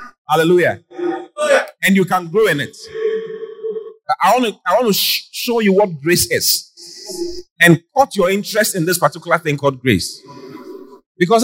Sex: male